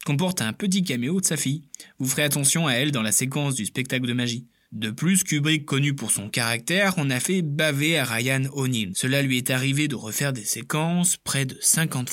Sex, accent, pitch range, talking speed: male, French, 110-155 Hz, 220 wpm